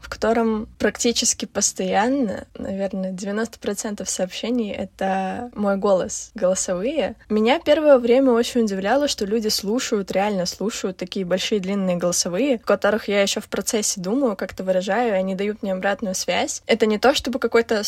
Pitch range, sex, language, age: 185-225 Hz, female, Russian, 20-39